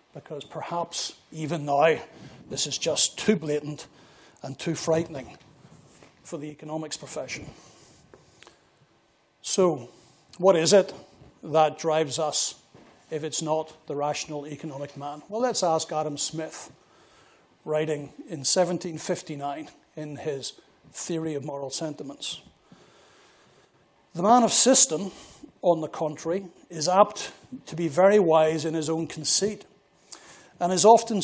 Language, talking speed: English, 125 wpm